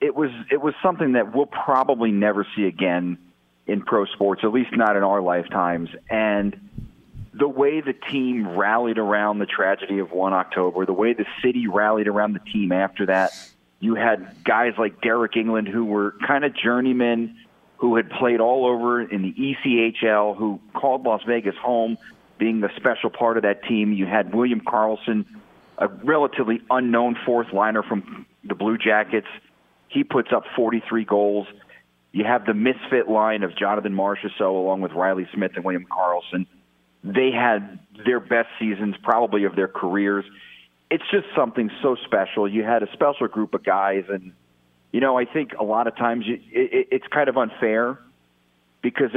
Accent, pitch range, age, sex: American, 95-120 Hz, 40-59, male